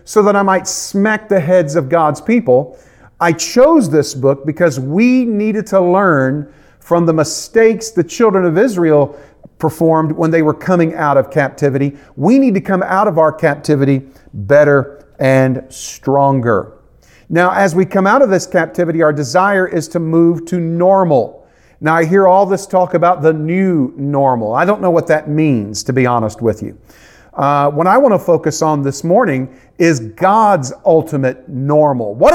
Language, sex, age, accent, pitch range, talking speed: English, male, 40-59, American, 145-195 Hz, 175 wpm